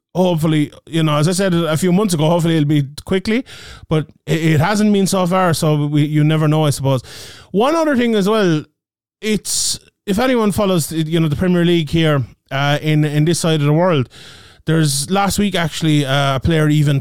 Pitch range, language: 145-170 Hz, English